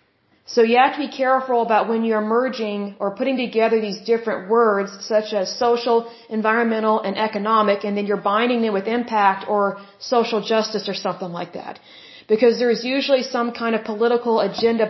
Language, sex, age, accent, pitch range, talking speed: Hindi, female, 30-49, American, 210-240 Hz, 180 wpm